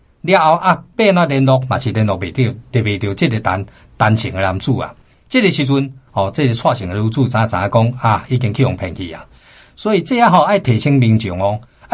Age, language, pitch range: 50-69, Chinese, 115-170 Hz